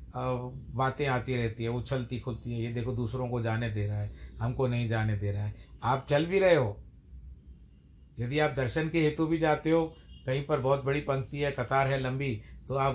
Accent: native